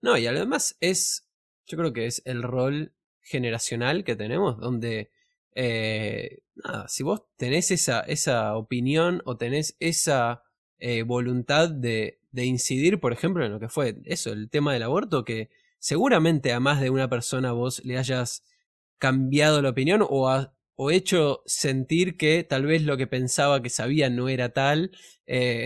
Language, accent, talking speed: Spanish, Argentinian, 165 wpm